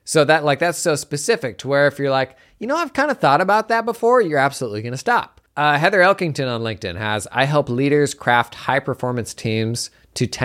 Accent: American